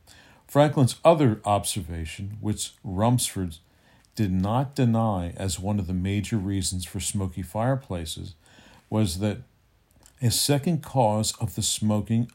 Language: English